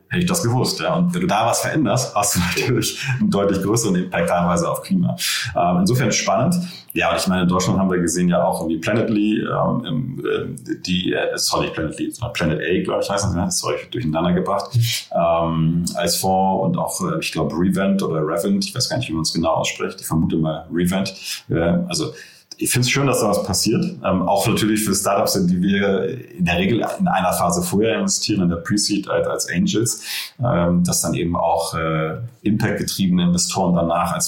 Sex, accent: male, German